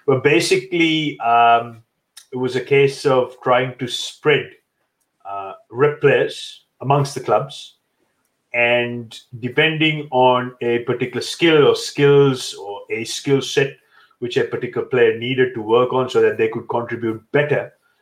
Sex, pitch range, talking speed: male, 125-170 Hz, 145 wpm